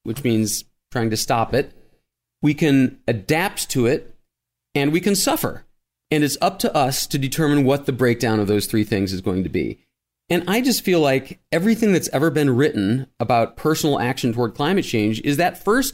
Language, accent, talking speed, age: English, American, 195 wpm, 40-59